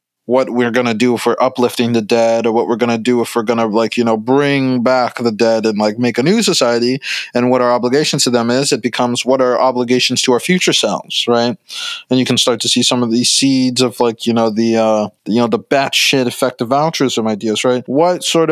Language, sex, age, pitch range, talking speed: English, male, 20-39, 120-145 Hz, 245 wpm